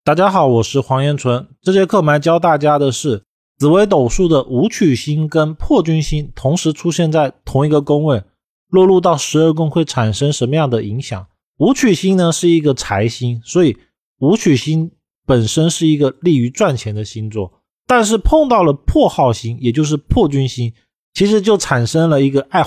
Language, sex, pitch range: Chinese, male, 120-170 Hz